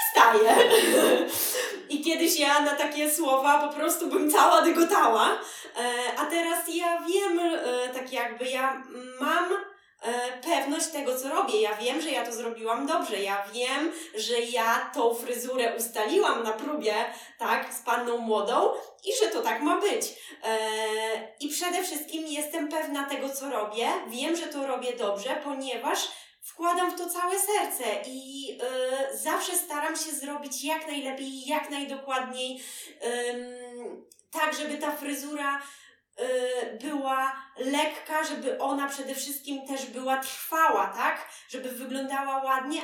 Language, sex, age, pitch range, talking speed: Polish, female, 20-39, 245-335 Hz, 135 wpm